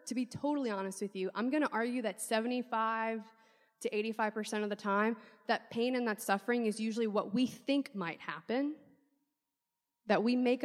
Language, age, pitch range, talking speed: English, 20-39, 210-255 Hz, 180 wpm